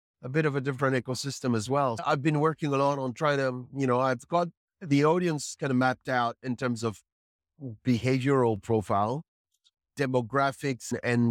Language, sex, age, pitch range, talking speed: English, male, 30-49, 110-135 Hz, 175 wpm